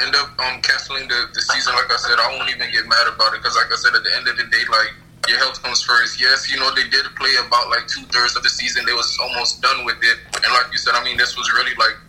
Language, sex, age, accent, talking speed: English, male, 20-39, American, 300 wpm